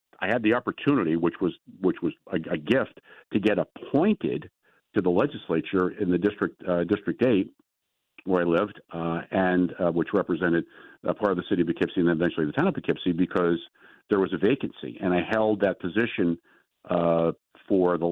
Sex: male